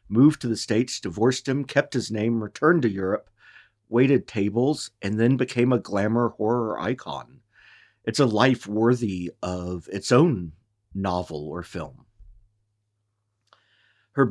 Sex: male